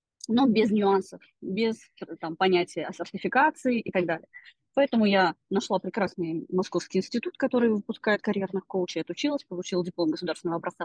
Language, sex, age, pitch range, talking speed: Russian, female, 20-39, 175-240 Hz, 140 wpm